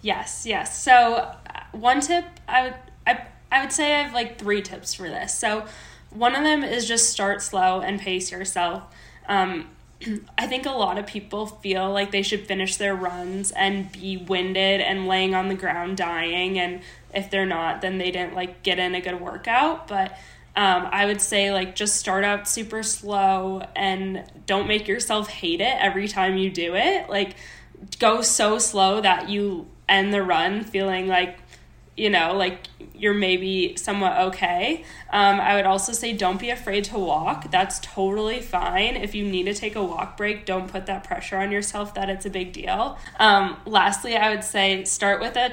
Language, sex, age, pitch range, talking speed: English, female, 10-29, 190-215 Hz, 190 wpm